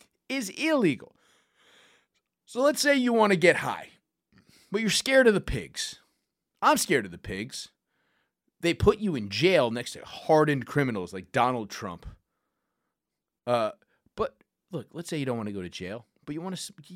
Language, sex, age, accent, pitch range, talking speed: English, male, 30-49, American, 130-210 Hz, 175 wpm